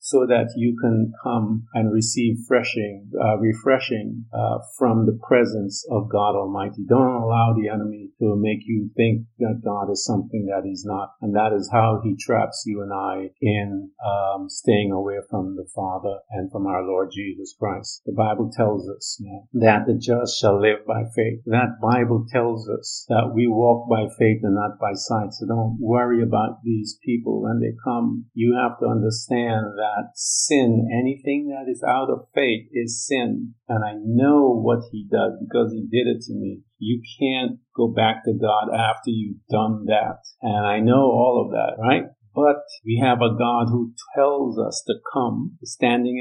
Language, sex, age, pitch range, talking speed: English, male, 50-69, 105-120 Hz, 185 wpm